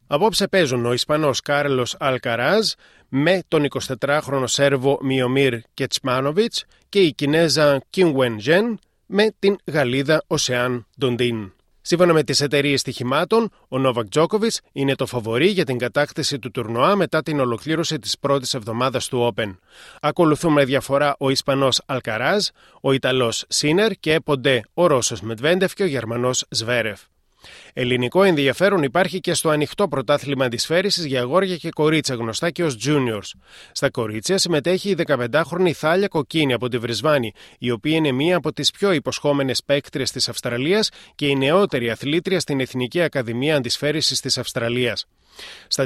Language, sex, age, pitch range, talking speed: Greek, male, 30-49, 125-165 Hz, 145 wpm